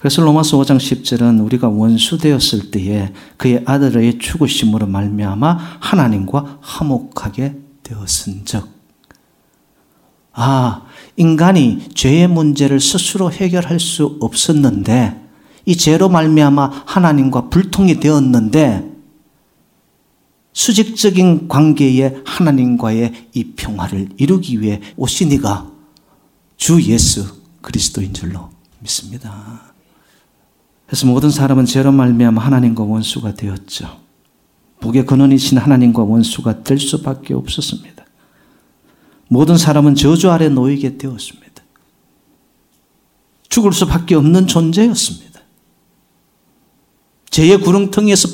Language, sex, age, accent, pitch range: Korean, male, 40-59, native, 110-165 Hz